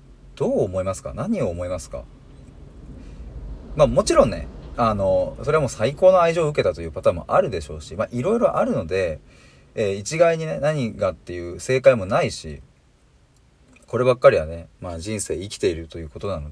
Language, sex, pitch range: Japanese, male, 80-115 Hz